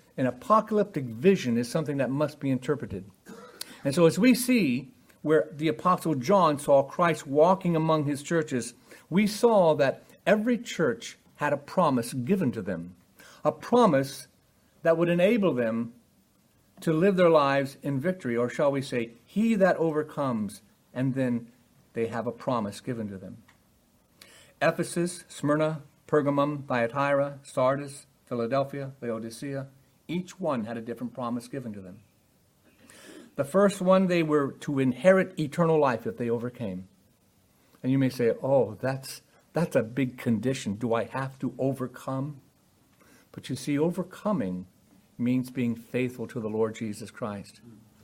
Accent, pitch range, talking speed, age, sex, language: American, 115-160 Hz, 145 wpm, 60-79, male, English